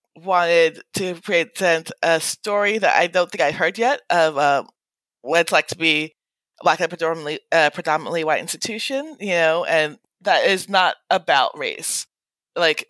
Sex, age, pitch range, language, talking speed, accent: female, 20-39, 160-205 Hz, English, 165 wpm, American